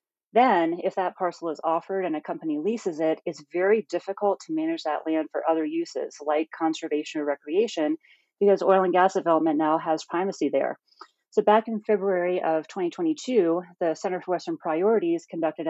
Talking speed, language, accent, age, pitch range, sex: 175 wpm, English, American, 30-49, 160-215 Hz, female